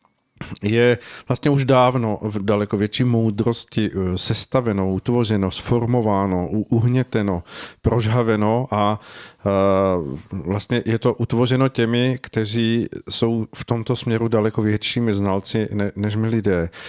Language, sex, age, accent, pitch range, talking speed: Czech, male, 40-59, native, 100-115 Hz, 105 wpm